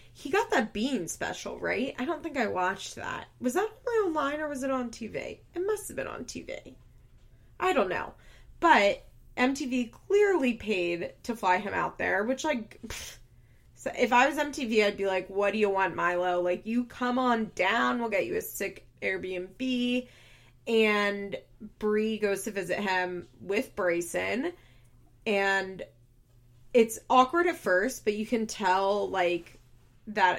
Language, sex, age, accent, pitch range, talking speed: English, female, 20-39, American, 175-235 Hz, 160 wpm